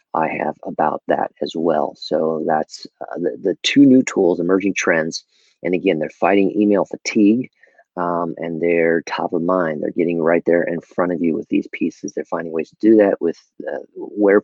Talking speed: 200 wpm